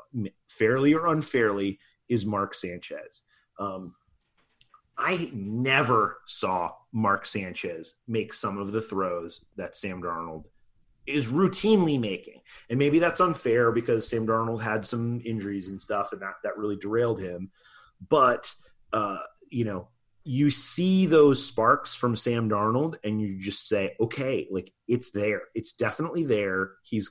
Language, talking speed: English, 140 wpm